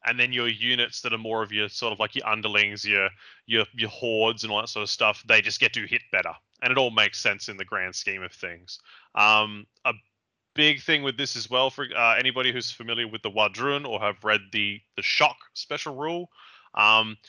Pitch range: 105-125 Hz